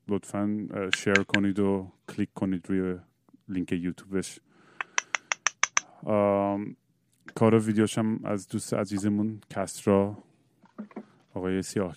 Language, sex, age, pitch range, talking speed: Persian, male, 30-49, 100-120 Hz, 90 wpm